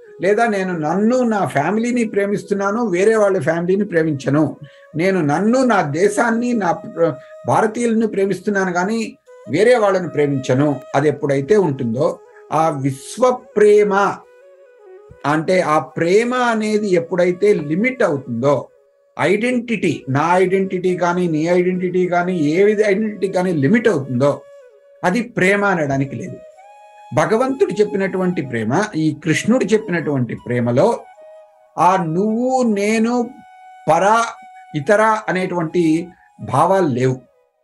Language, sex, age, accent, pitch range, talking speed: Telugu, male, 60-79, native, 155-230 Hz, 105 wpm